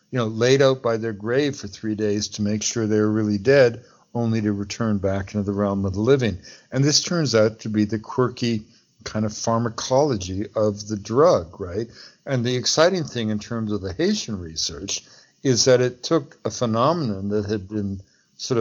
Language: English